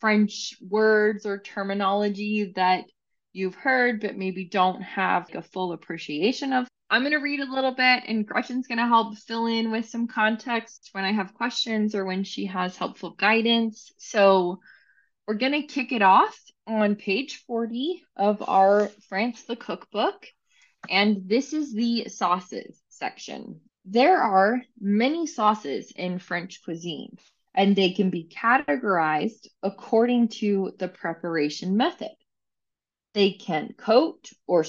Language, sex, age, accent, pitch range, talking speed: English, female, 20-39, American, 190-245 Hz, 145 wpm